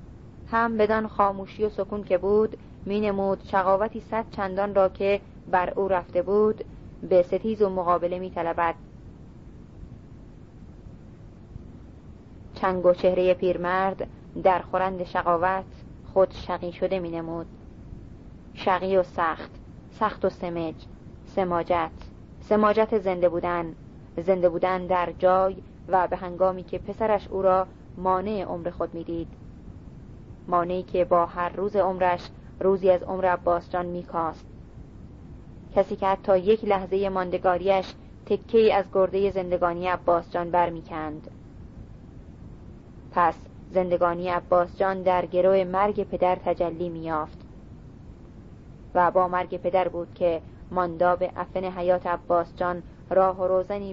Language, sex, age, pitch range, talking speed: Persian, female, 30-49, 175-190 Hz, 120 wpm